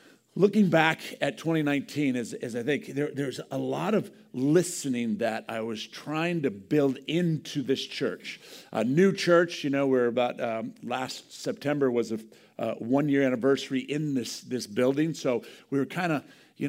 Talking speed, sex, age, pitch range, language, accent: 175 wpm, male, 50-69, 130-160 Hz, English, American